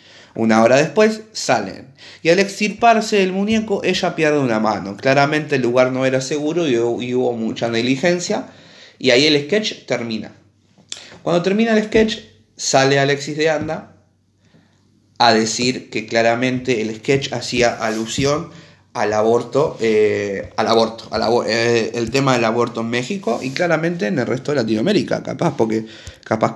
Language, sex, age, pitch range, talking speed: Spanish, male, 30-49, 110-140 Hz, 150 wpm